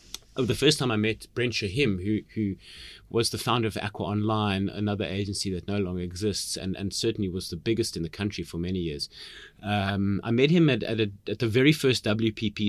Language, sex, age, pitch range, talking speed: English, male, 30-49, 100-125 Hz, 220 wpm